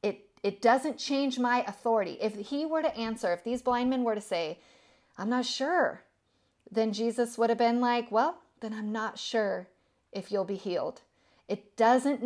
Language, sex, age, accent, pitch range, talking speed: English, female, 40-59, American, 190-240 Hz, 180 wpm